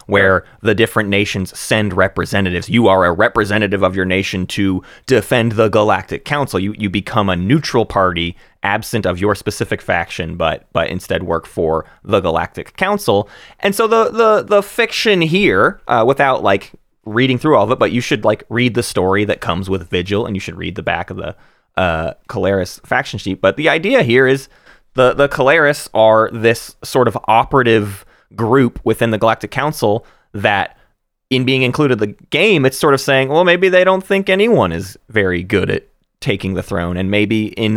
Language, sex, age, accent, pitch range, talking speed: English, male, 20-39, American, 95-130 Hz, 190 wpm